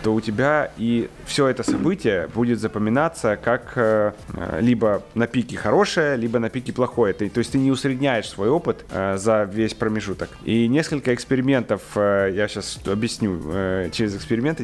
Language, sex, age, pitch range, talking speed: Ukrainian, male, 30-49, 115-155 Hz, 150 wpm